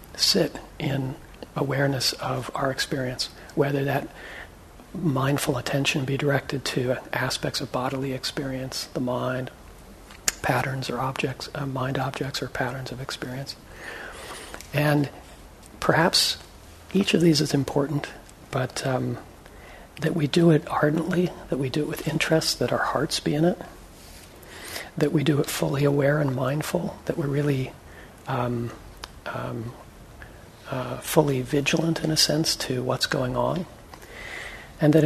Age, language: 40-59, English